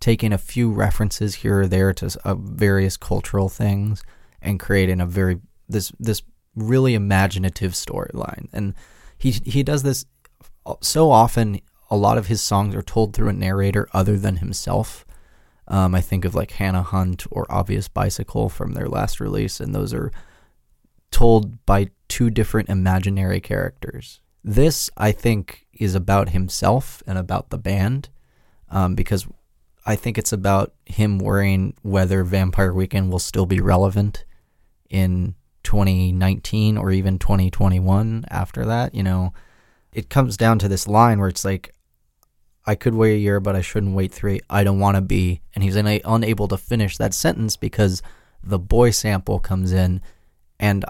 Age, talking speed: 20-39, 160 wpm